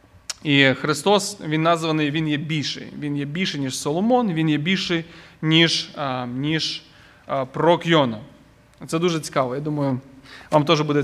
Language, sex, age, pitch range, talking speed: Ukrainian, male, 20-39, 150-225 Hz, 160 wpm